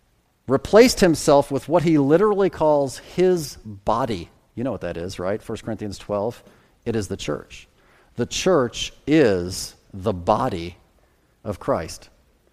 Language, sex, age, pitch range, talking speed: English, male, 40-59, 110-140 Hz, 140 wpm